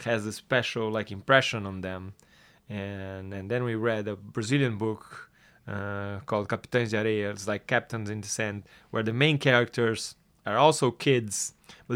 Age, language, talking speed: 20-39, English, 165 wpm